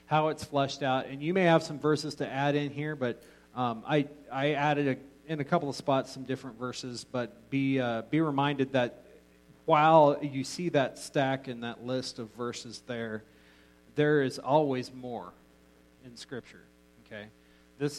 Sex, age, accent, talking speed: male, 40-59, American, 175 wpm